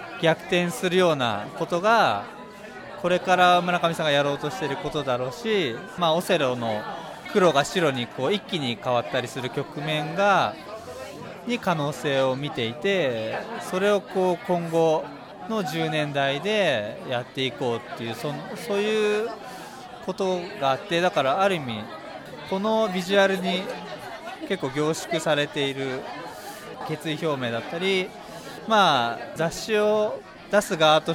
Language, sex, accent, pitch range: Japanese, male, native, 140-200 Hz